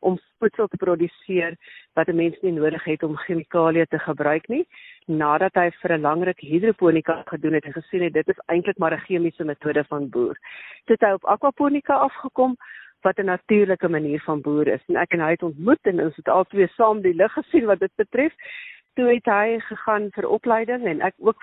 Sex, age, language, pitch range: female, 50-69, Swedish, 160-205 Hz